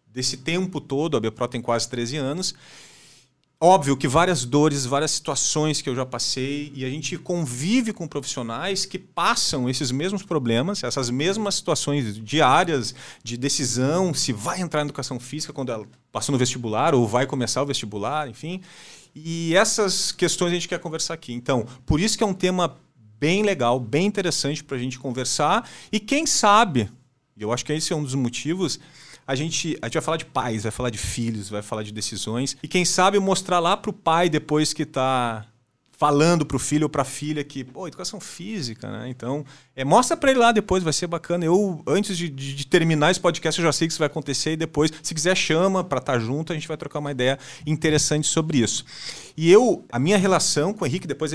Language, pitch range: Portuguese, 130-170 Hz